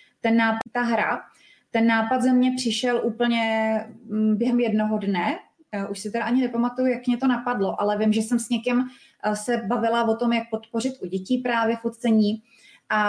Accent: native